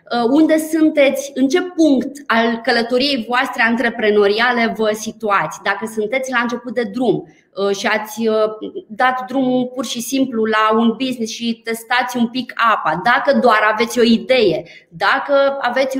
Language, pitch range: Romanian, 215-270 Hz